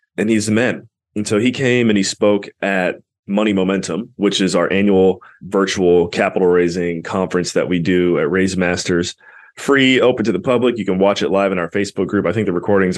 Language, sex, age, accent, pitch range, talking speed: English, male, 20-39, American, 90-105 Hz, 215 wpm